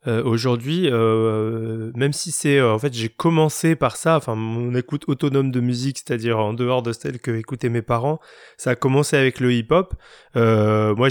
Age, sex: 20-39, male